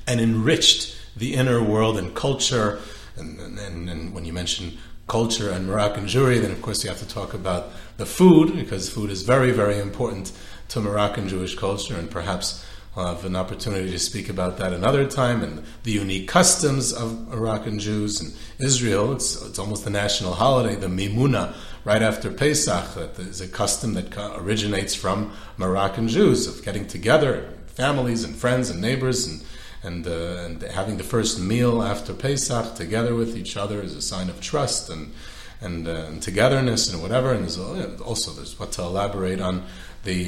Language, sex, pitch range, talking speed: English, male, 95-115 Hz, 180 wpm